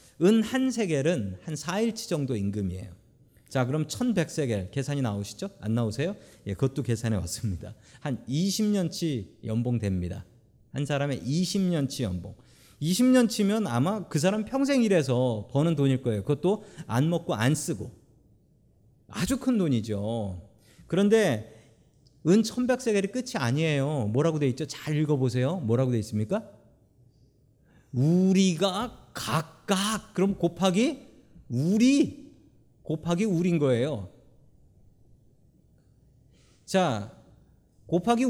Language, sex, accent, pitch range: Korean, male, native, 120-185 Hz